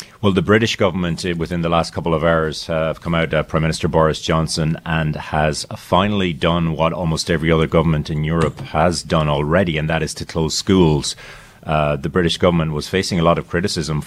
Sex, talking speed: male, 205 wpm